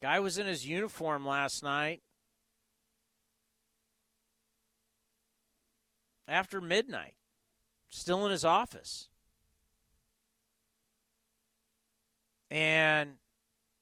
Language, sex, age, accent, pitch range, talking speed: English, male, 50-69, American, 125-200 Hz, 60 wpm